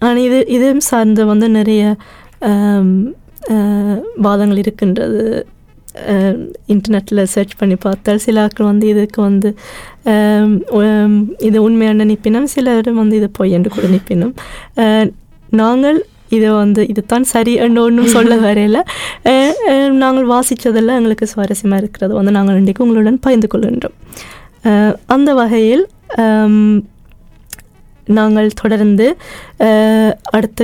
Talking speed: 100 wpm